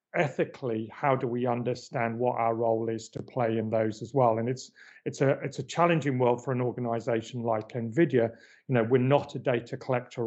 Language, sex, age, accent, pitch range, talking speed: English, male, 40-59, British, 115-135 Hz, 205 wpm